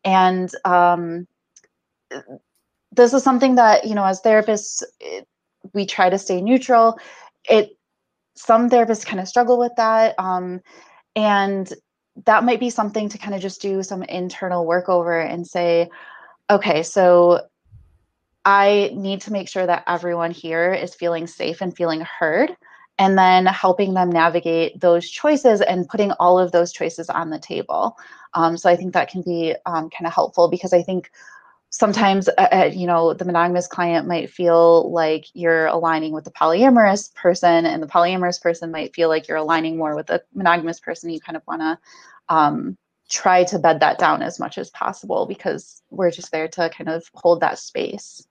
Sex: female